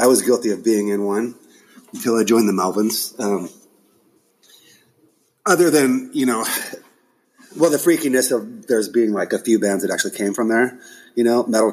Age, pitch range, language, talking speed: 30-49, 100-130 Hz, English, 180 wpm